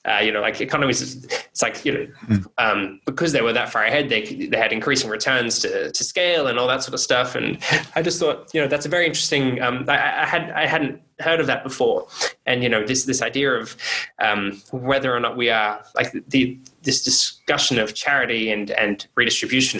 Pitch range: 110-140 Hz